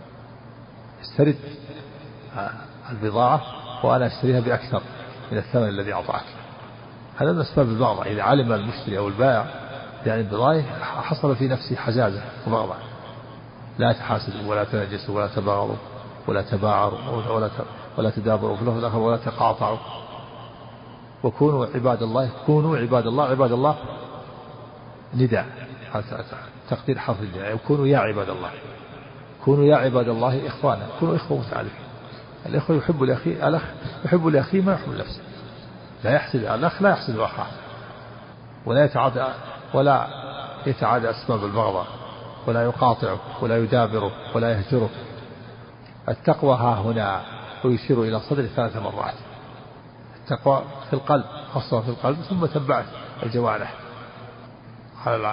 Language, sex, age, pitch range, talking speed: Arabic, male, 50-69, 115-140 Hz, 115 wpm